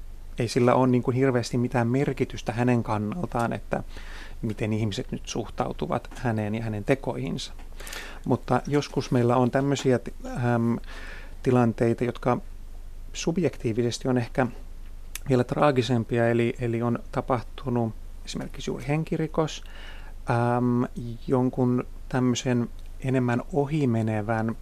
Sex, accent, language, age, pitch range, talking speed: male, native, Finnish, 30-49, 105-130 Hz, 110 wpm